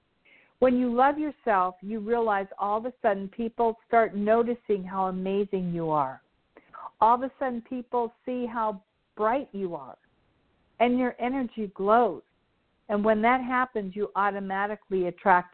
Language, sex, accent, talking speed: English, female, American, 145 wpm